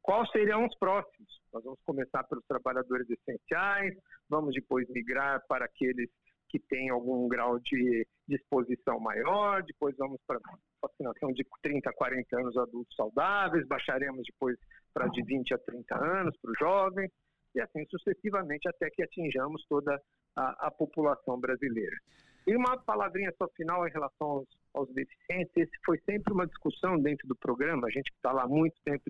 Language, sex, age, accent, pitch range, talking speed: Portuguese, male, 50-69, Brazilian, 135-195 Hz, 160 wpm